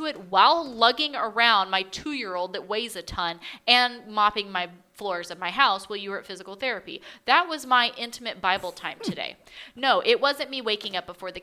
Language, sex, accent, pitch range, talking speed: English, female, American, 195-265 Hz, 200 wpm